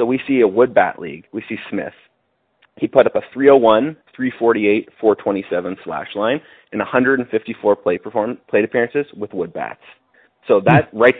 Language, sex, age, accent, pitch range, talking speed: English, male, 30-49, American, 105-140 Hz, 155 wpm